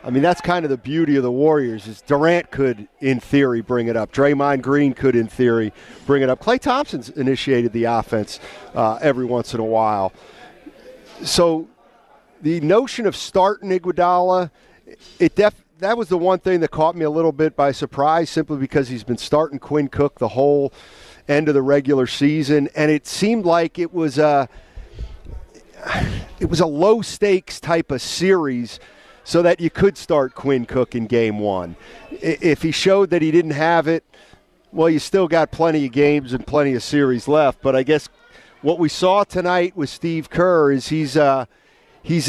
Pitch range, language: 130-160 Hz, English